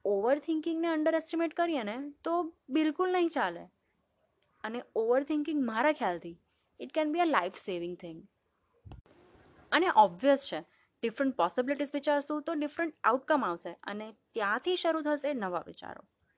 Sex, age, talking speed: female, 20-39, 115 wpm